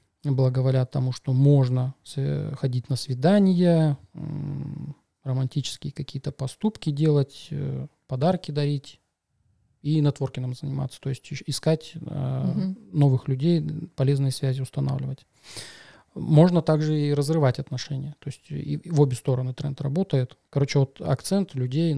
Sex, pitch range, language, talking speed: male, 130-150 Hz, Russian, 110 wpm